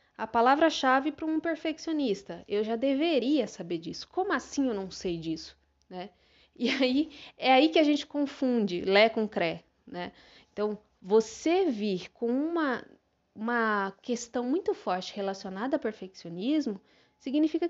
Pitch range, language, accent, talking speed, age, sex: 210-300 Hz, Portuguese, Brazilian, 140 wpm, 20-39, female